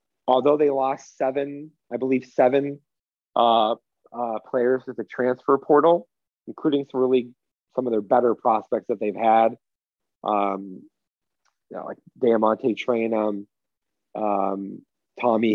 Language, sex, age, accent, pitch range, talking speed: English, male, 30-49, American, 100-130 Hz, 120 wpm